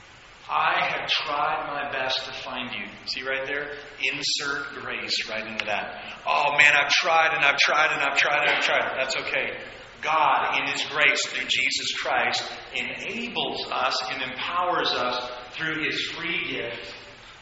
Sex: male